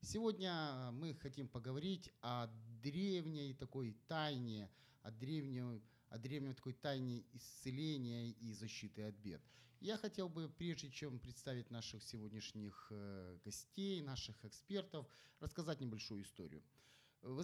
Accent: native